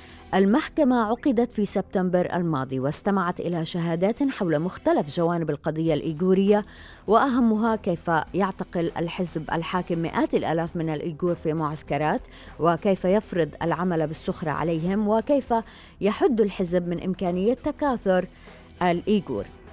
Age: 30-49